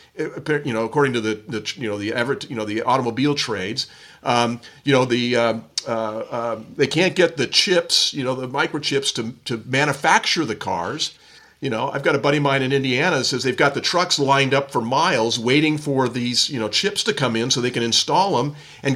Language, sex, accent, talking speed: English, male, American, 230 wpm